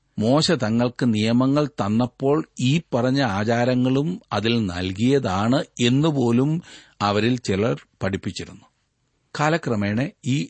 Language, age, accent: Malayalam, 40-59, native